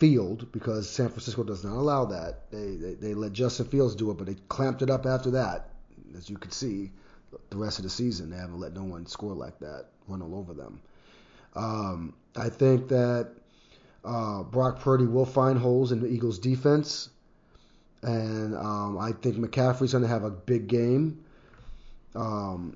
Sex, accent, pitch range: male, American, 100-130 Hz